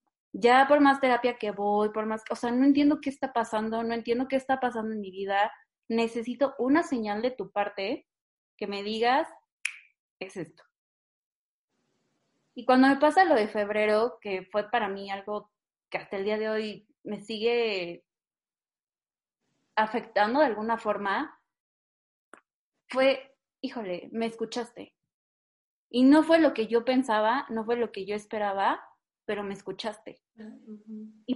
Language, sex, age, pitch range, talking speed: Spanish, female, 20-39, 210-265 Hz, 150 wpm